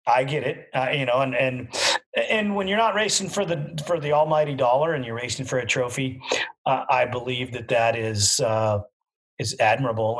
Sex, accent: male, American